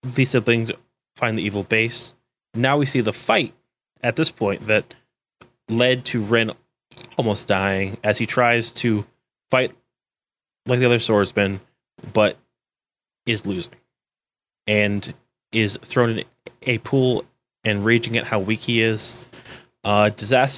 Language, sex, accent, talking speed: English, male, American, 135 wpm